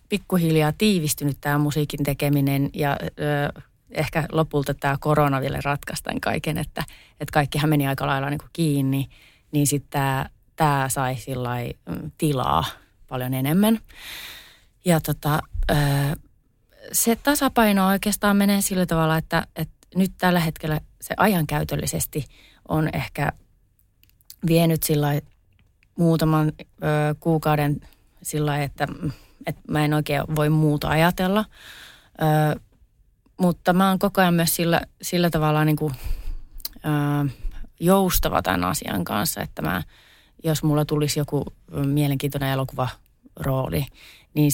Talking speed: 120 wpm